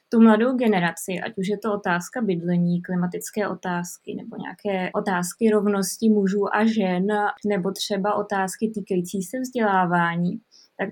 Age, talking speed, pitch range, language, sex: 20-39, 135 wpm, 205-235 Hz, Czech, female